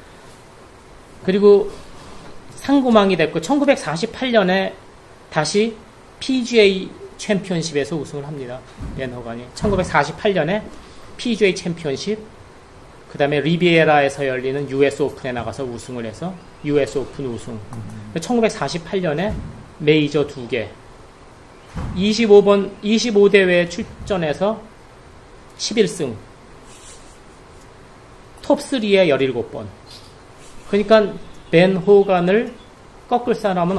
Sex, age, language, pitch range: male, 40-59, Korean, 135-205 Hz